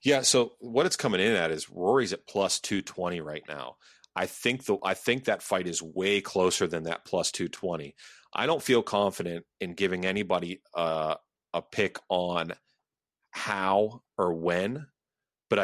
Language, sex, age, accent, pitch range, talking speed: English, male, 30-49, American, 85-100 Hz, 170 wpm